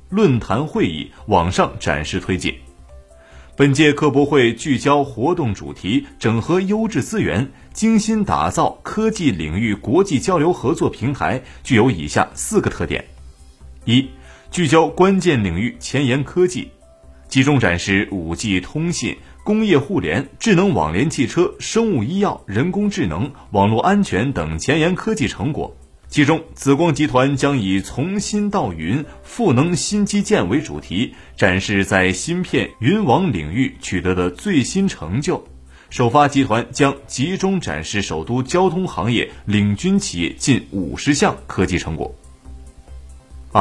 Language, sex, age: Chinese, male, 30-49